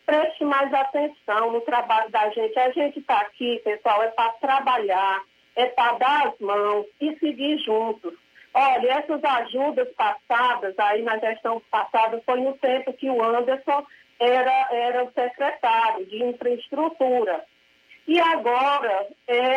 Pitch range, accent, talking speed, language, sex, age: 235-290 Hz, Brazilian, 140 wpm, Portuguese, female, 40-59